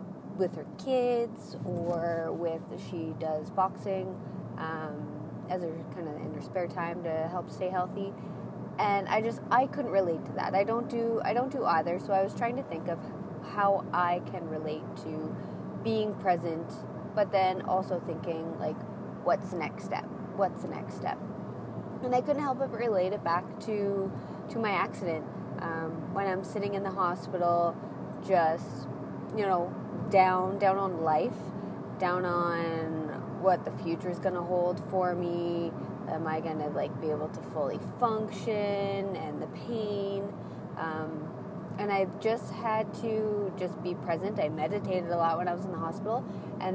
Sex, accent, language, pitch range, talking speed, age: female, American, English, 170-200 Hz, 170 wpm, 20-39